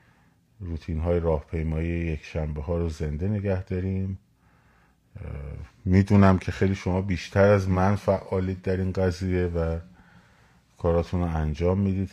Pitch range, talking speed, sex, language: 80-95 Hz, 140 wpm, male, Persian